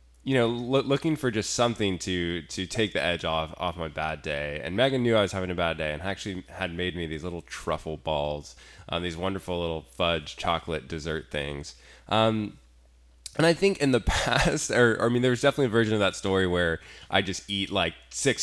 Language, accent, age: English, American, 20-39